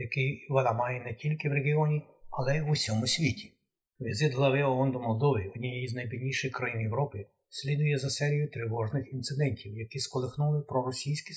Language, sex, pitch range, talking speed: Ukrainian, male, 125-145 Hz, 160 wpm